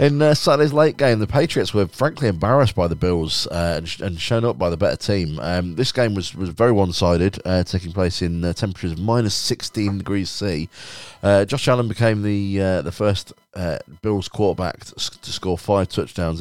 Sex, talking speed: male, 210 wpm